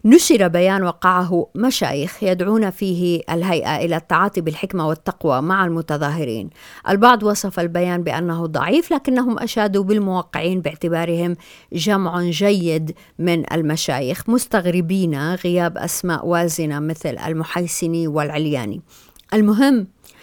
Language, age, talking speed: Arabic, 50-69, 100 wpm